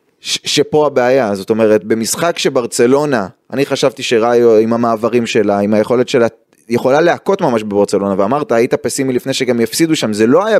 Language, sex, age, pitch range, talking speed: Hebrew, male, 20-39, 120-175 Hz, 170 wpm